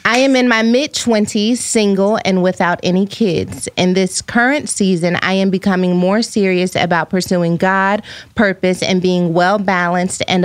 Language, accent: English, American